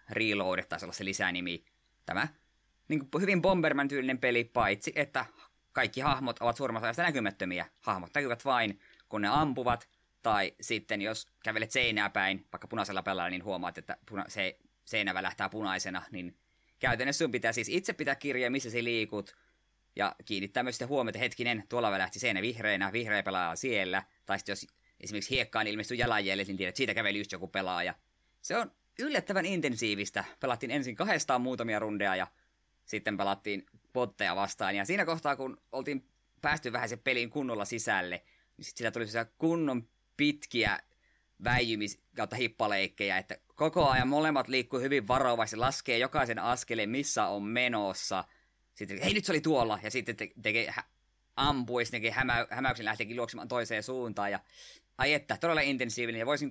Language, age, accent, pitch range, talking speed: Finnish, 20-39, native, 105-130 Hz, 155 wpm